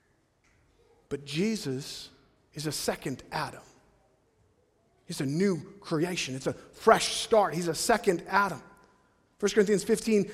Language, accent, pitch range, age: English, American, 155-200 Hz, 40-59